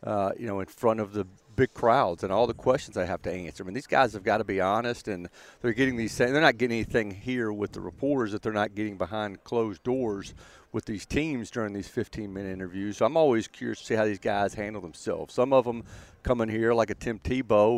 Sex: male